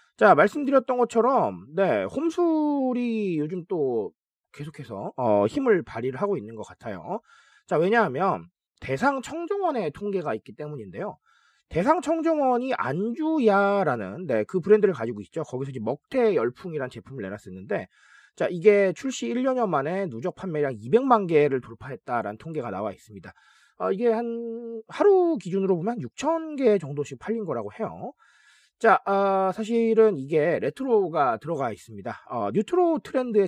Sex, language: male, Korean